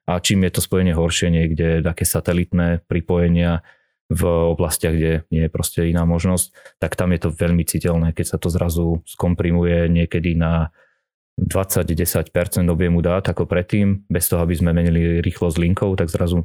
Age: 20-39